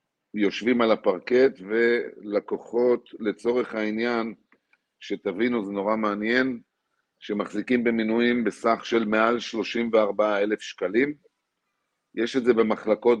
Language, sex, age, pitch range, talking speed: Hebrew, male, 50-69, 100-120 Hz, 100 wpm